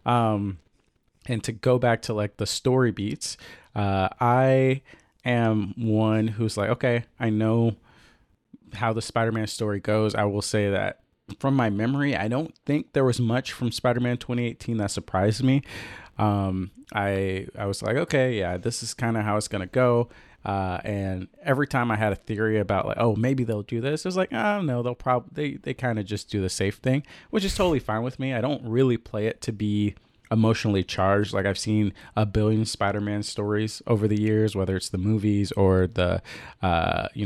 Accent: American